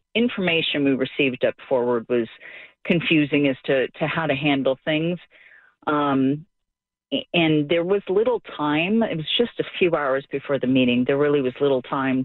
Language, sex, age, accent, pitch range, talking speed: English, female, 40-59, American, 130-160 Hz, 165 wpm